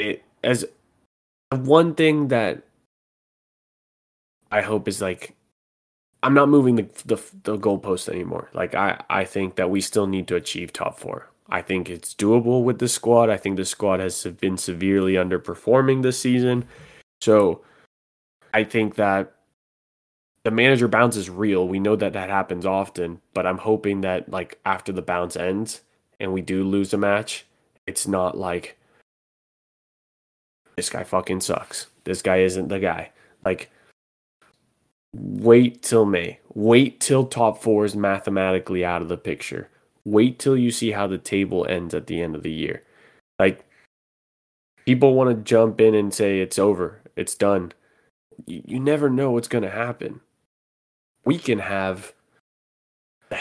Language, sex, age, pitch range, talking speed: English, male, 20-39, 95-120 Hz, 155 wpm